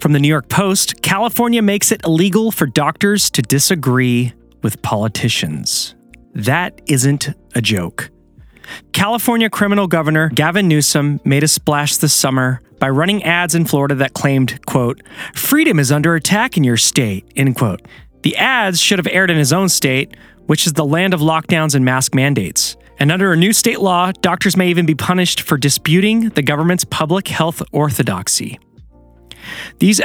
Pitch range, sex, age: 135-185 Hz, male, 30-49